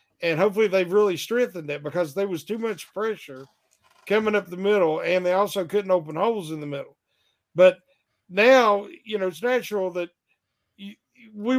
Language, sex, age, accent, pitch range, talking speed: English, male, 50-69, American, 160-215 Hz, 170 wpm